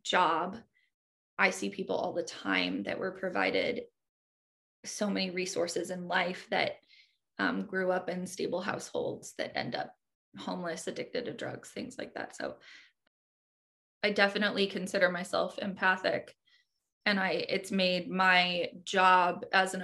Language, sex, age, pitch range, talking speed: English, female, 20-39, 185-215 Hz, 140 wpm